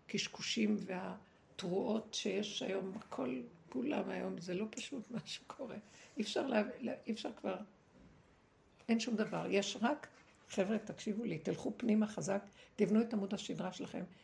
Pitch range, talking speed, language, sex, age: 190-230 Hz, 140 wpm, Hebrew, female, 60-79